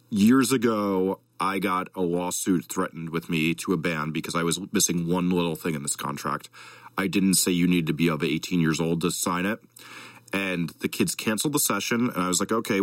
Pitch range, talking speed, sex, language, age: 85-105 Hz, 220 wpm, male, English, 40-59